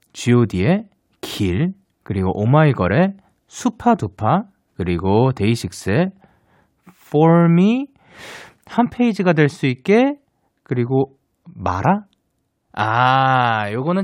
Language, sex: Korean, male